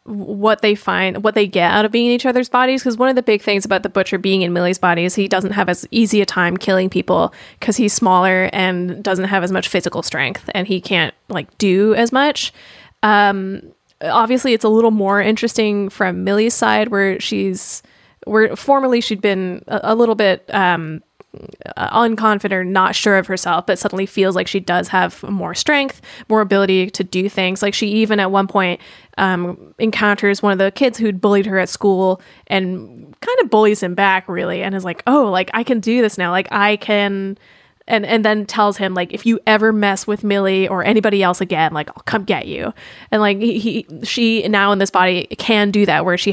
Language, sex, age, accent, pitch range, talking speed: English, female, 20-39, American, 185-225 Hz, 215 wpm